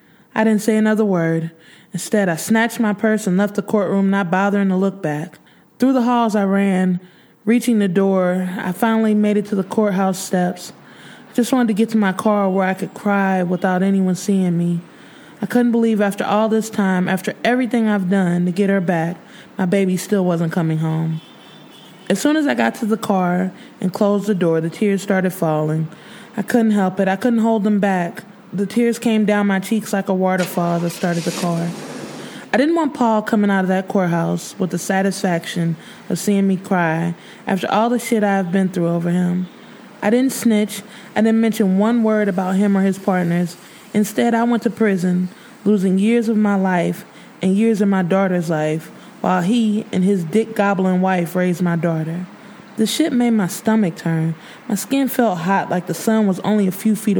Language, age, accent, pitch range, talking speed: English, 20-39, American, 180-220 Hz, 200 wpm